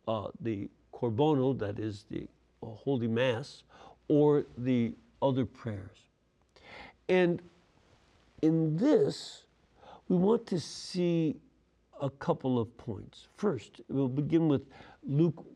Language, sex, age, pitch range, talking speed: English, male, 60-79, 125-180 Hz, 110 wpm